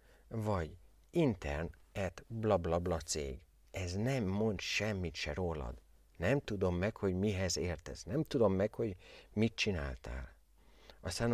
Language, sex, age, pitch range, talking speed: Hungarian, male, 60-79, 80-110 Hz, 120 wpm